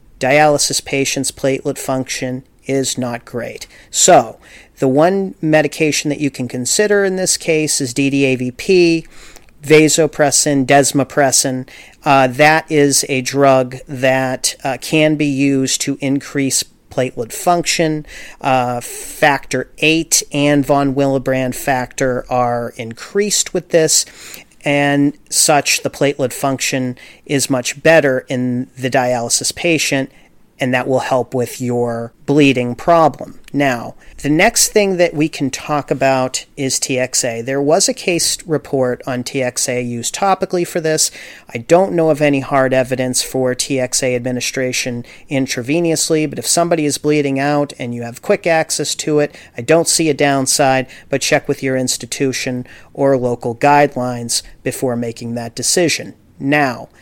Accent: American